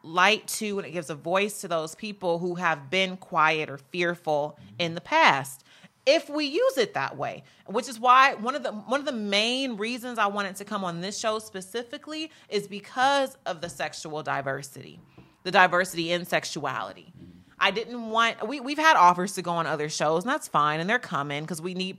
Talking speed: 200 wpm